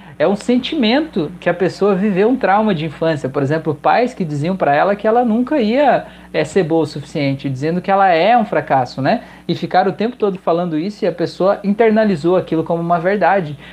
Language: Portuguese